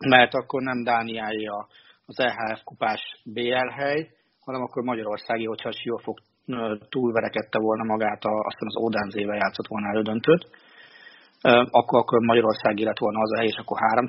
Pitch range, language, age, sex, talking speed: 115-130 Hz, Hungarian, 40-59, male, 145 wpm